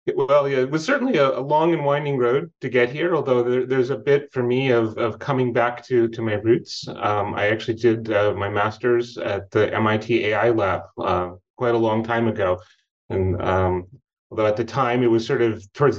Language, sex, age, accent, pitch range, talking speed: English, male, 30-49, American, 115-135 Hz, 220 wpm